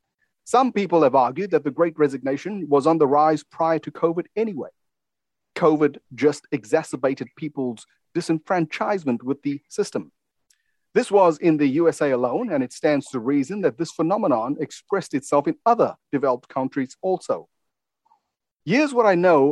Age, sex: 40-59, male